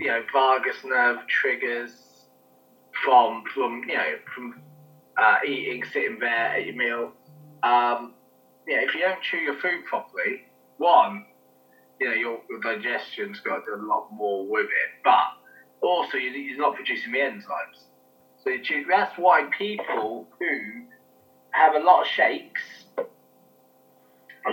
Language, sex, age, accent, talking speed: English, male, 20-39, British, 150 wpm